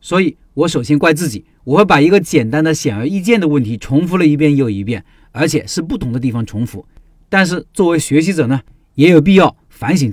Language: Chinese